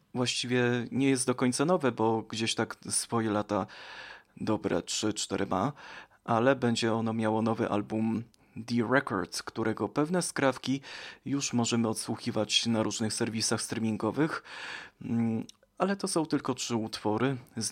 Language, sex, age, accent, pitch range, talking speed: Polish, male, 20-39, native, 115-130 Hz, 130 wpm